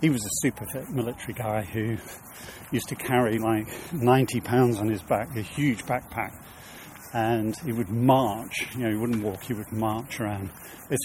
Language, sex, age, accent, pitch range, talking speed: English, male, 50-69, British, 110-130 Hz, 185 wpm